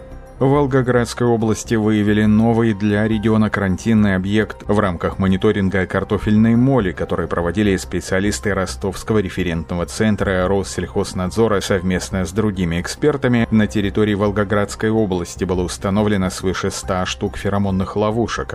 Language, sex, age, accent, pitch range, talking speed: Russian, male, 30-49, native, 90-110 Hz, 115 wpm